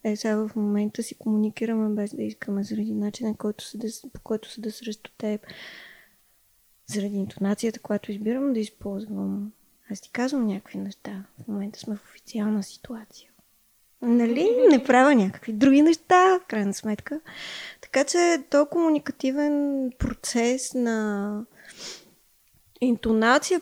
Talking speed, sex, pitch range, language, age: 130 wpm, female, 215-275 Hz, Bulgarian, 20-39